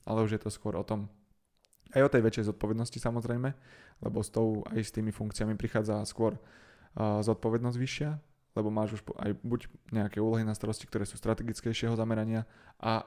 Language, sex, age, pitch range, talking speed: Slovak, male, 20-39, 105-115 Hz, 180 wpm